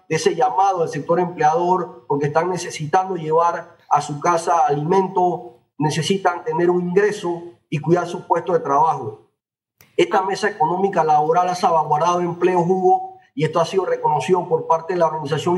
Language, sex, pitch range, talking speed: Spanish, male, 165-195 Hz, 160 wpm